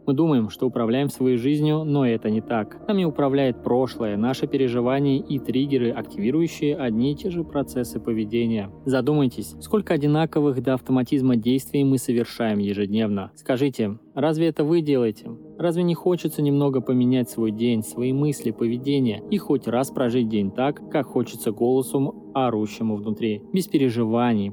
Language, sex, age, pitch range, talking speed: Russian, male, 20-39, 115-150 Hz, 150 wpm